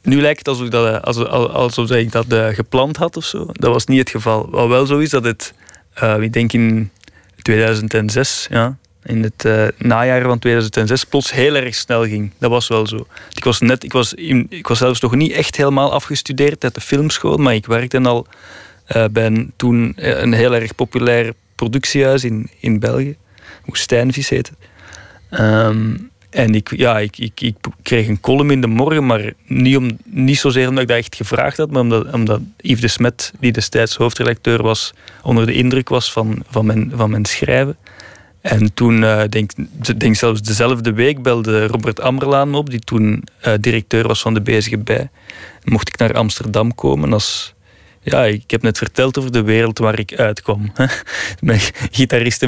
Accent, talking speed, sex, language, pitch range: Dutch, 190 wpm, male, Dutch, 110-130 Hz